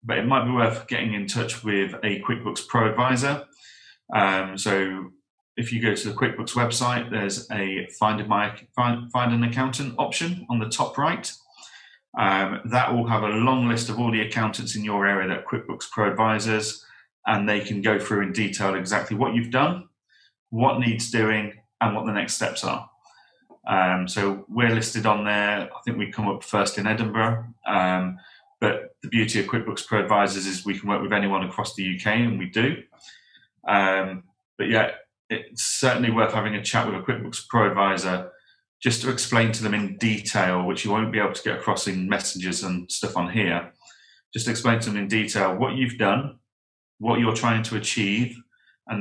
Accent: British